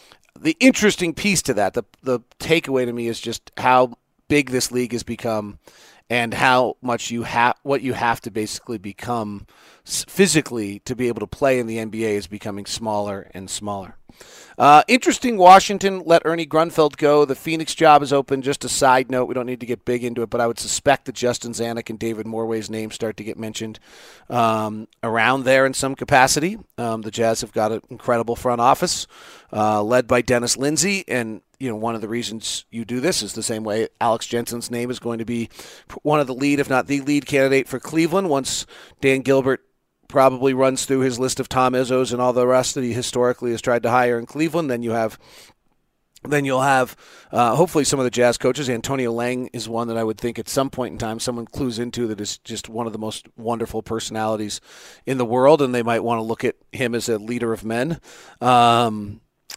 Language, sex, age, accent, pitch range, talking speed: English, male, 40-59, American, 115-130 Hz, 215 wpm